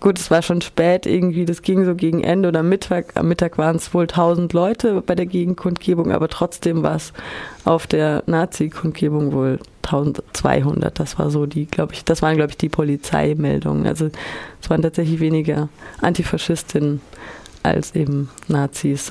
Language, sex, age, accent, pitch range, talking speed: German, female, 30-49, German, 160-190 Hz, 165 wpm